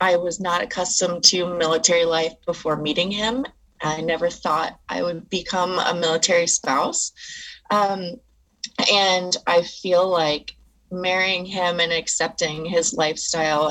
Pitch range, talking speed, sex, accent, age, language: 160-205 Hz, 130 wpm, female, American, 20-39, English